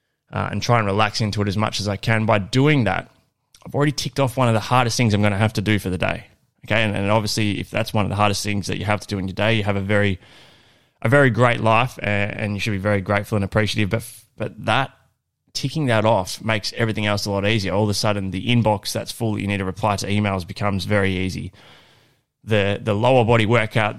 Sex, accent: male, Australian